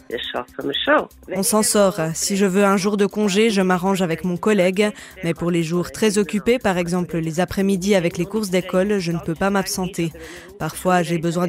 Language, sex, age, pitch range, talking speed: German, female, 20-39, 180-225 Hz, 195 wpm